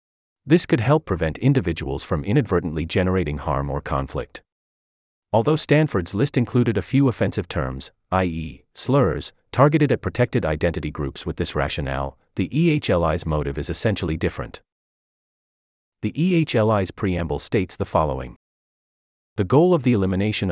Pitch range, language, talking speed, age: 75-120 Hz, English, 135 wpm, 30-49